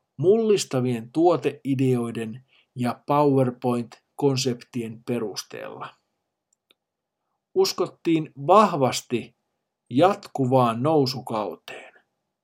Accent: native